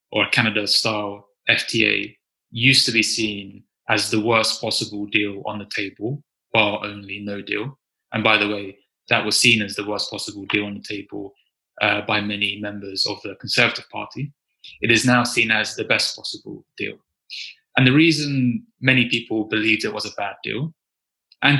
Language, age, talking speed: English, 20-39, 175 wpm